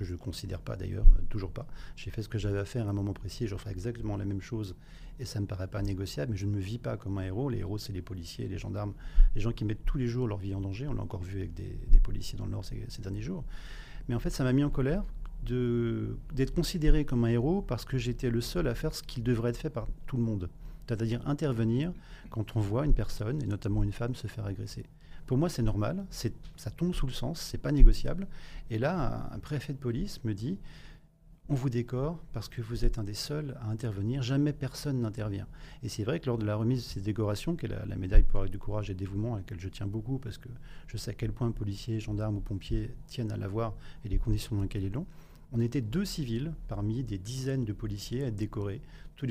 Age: 40-59